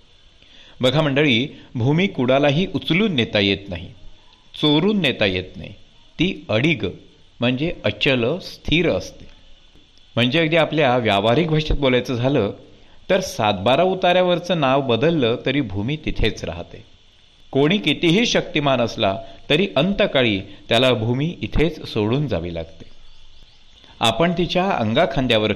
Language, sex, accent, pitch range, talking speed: Marathi, male, native, 100-150 Hz, 115 wpm